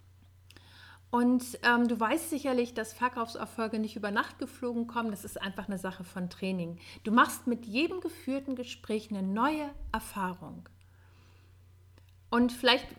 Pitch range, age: 195-275 Hz, 40-59